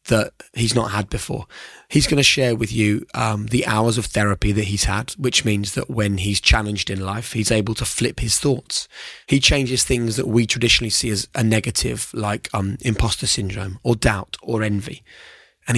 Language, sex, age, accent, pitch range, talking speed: English, male, 20-39, British, 105-120 Hz, 200 wpm